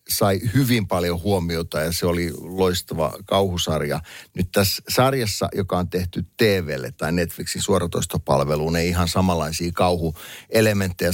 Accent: native